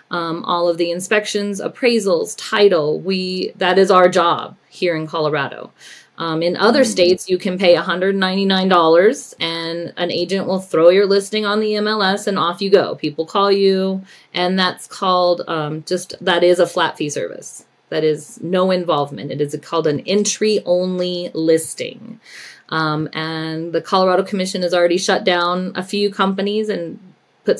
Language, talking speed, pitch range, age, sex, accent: English, 165 wpm, 170-210 Hz, 30-49, female, American